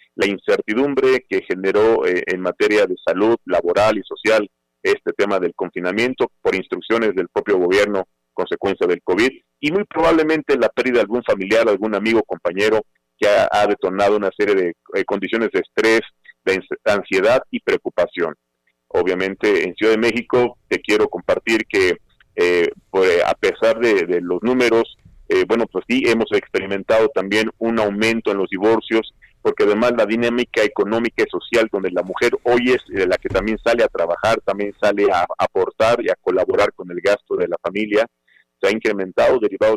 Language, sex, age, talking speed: Spanish, male, 40-59, 170 wpm